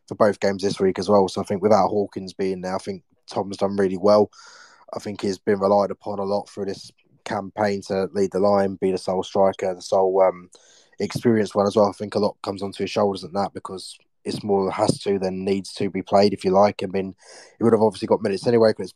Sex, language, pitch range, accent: male, English, 95-105 Hz, British